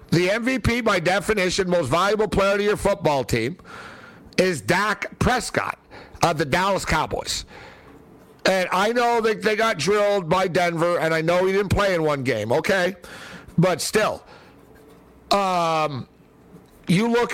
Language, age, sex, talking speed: English, 50-69, male, 145 wpm